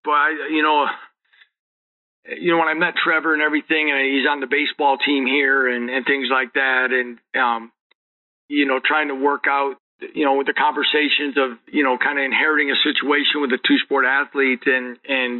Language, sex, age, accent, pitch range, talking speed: English, male, 40-59, American, 125-140 Hz, 200 wpm